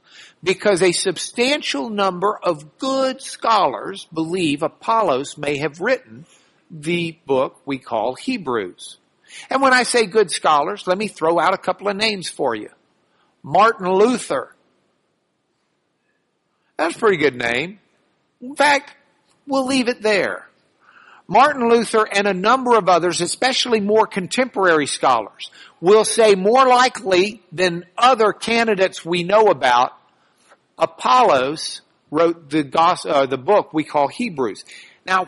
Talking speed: 130 wpm